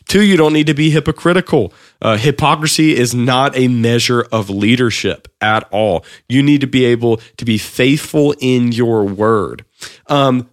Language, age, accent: English, 30-49, American